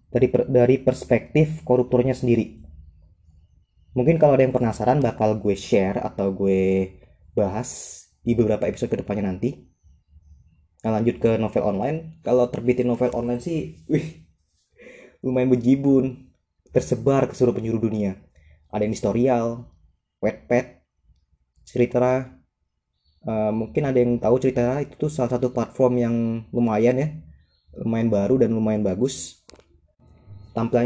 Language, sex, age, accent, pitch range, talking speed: Indonesian, male, 20-39, native, 100-125 Hz, 125 wpm